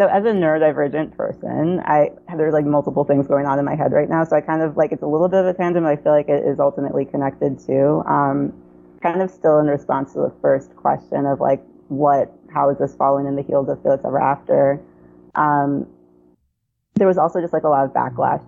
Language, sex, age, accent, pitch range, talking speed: English, female, 20-39, American, 130-155 Hz, 235 wpm